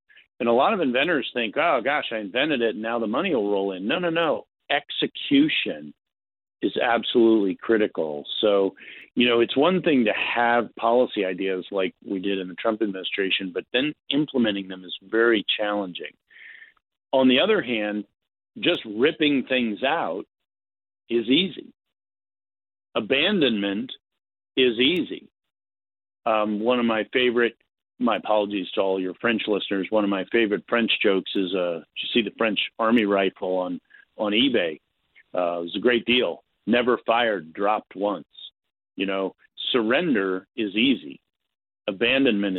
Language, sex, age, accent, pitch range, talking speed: English, male, 50-69, American, 95-115 Hz, 150 wpm